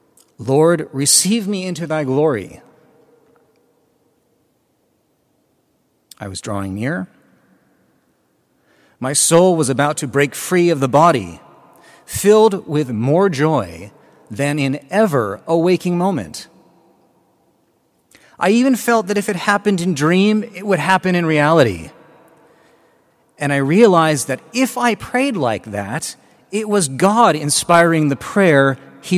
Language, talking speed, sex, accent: English, 125 wpm, male, American